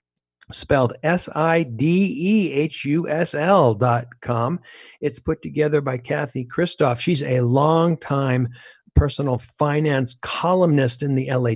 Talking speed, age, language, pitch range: 135 wpm, 50-69, English, 125-160 Hz